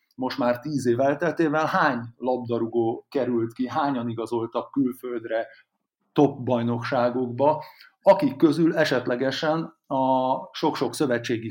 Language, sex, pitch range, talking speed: Hungarian, male, 120-150 Hz, 105 wpm